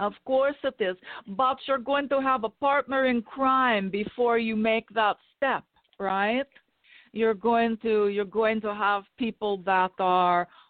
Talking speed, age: 165 wpm, 50-69